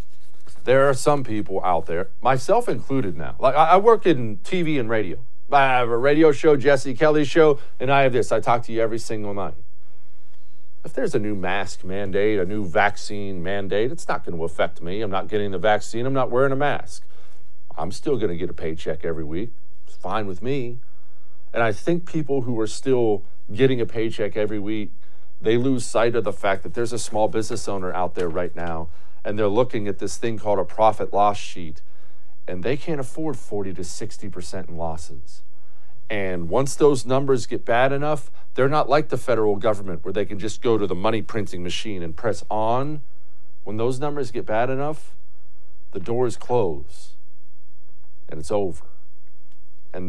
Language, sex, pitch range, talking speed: English, male, 85-120 Hz, 195 wpm